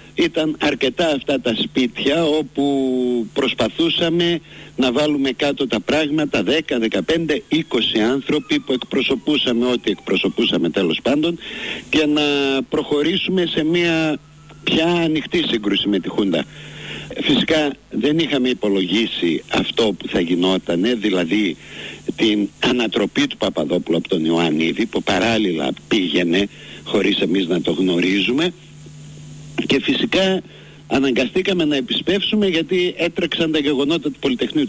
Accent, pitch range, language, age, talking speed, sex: native, 120-165 Hz, Greek, 60-79, 120 wpm, male